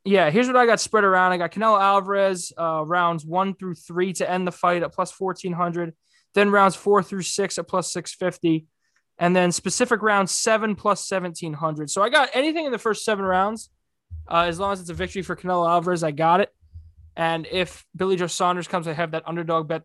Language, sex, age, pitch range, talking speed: English, male, 20-39, 165-205 Hz, 215 wpm